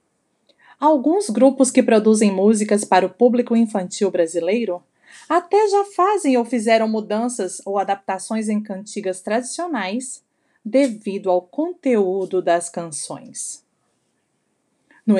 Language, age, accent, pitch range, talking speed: Portuguese, 30-49, Brazilian, 190-260 Hz, 105 wpm